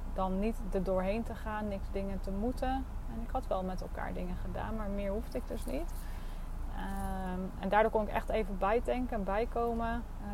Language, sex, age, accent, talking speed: Dutch, female, 30-49, Dutch, 195 wpm